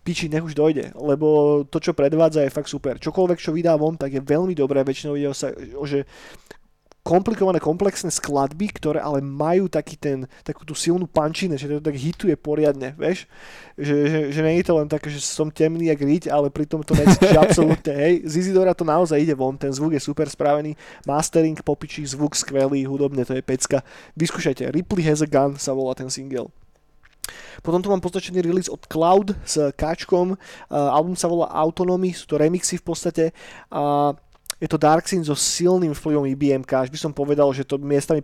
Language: Slovak